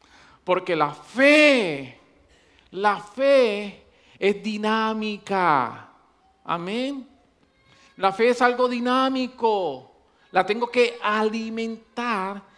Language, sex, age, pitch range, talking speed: English, male, 50-69, 140-195 Hz, 80 wpm